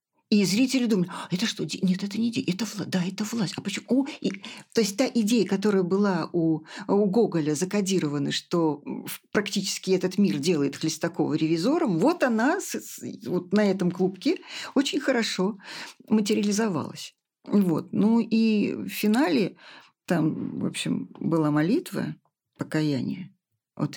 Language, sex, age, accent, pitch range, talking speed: Russian, female, 50-69, native, 160-210 Hz, 145 wpm